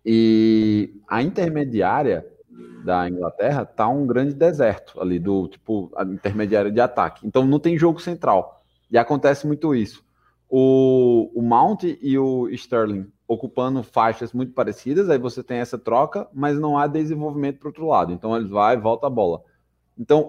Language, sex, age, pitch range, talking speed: Portuguese, male, 20-39, 105-145 Hz, 165 wpm